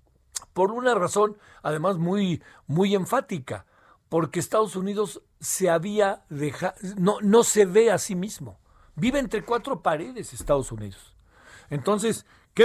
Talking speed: 135 wpm